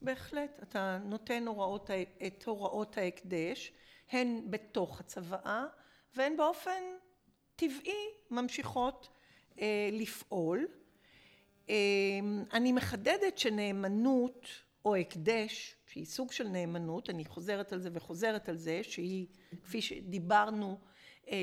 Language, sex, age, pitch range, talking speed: Hebrew, female, 50-69, 195-270 Hz, 105 wpm